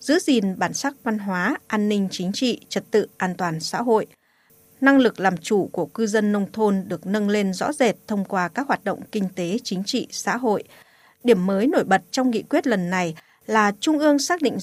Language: Vietnamese